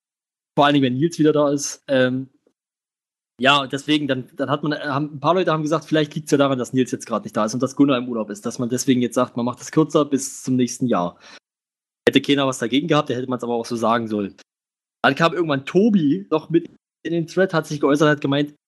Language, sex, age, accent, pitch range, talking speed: German, male, 20-39, German, 130-155 Hz, 255 wpm